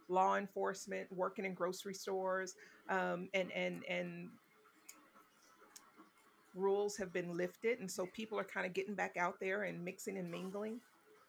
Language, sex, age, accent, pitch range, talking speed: English, female, 40-59, American, 180-205 Hz, 150 wpm